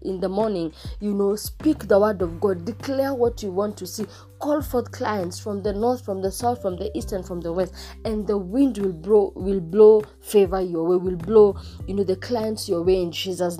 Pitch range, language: 180-230 Hz, English